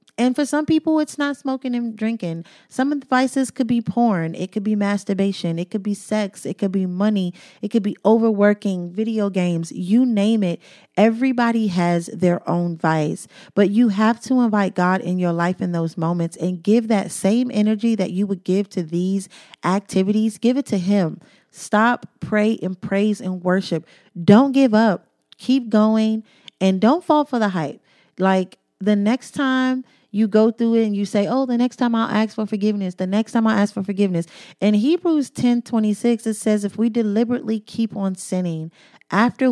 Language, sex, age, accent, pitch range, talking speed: English, female, 30-49, American, 185-225 Hz, 190 wpm